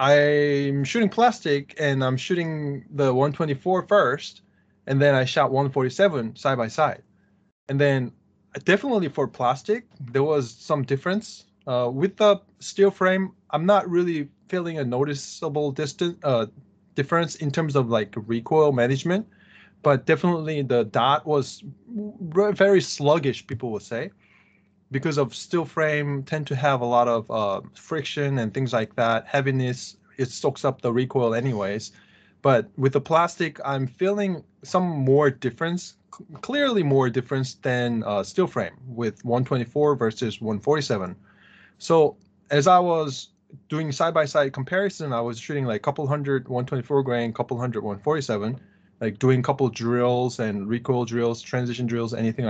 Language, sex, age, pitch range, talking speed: English, male, 20-39, 120-160 Hz, 150 wpm